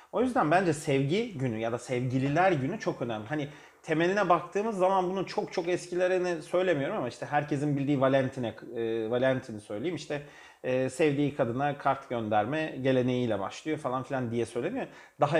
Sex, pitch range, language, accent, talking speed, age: male, 125-160 Hz, Turkish, native, 160 wpm, 40-59